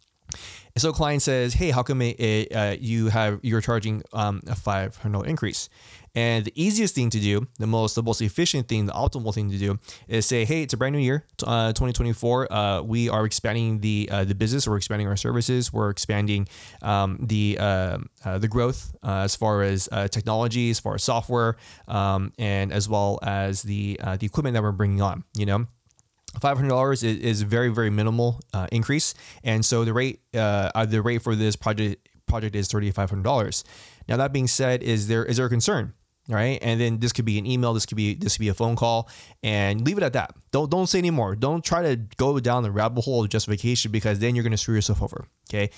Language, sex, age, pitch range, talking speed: English, male, 20-39, 105-125 Hz, 225 wpm